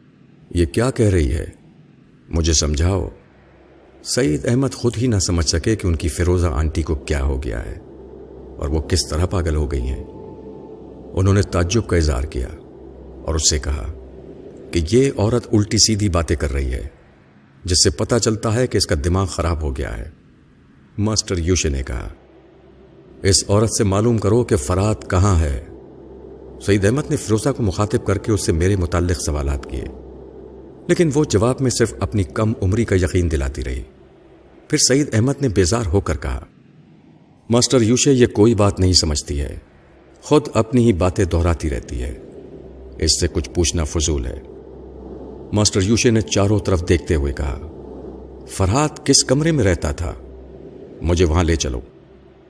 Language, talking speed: Urdu, 170 wpm